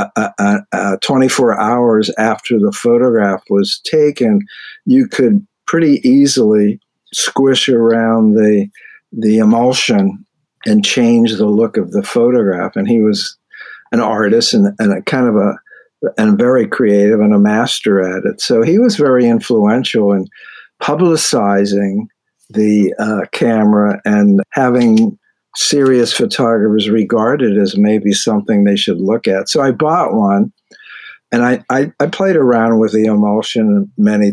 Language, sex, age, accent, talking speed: English, male, 60-79, American, 140 wpm